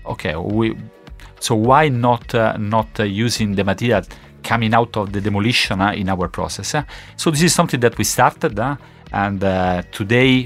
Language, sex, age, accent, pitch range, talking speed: Italian, male, 40-59, native, 95-115 Hz, 185 wpm